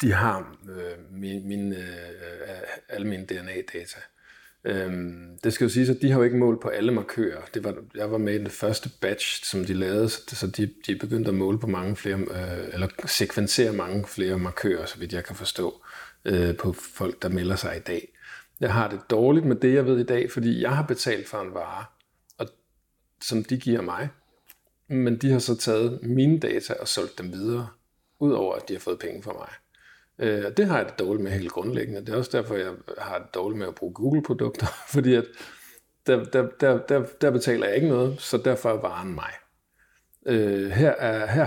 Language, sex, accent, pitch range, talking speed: Danish, male, native, 95-125 Hz, 210 wpm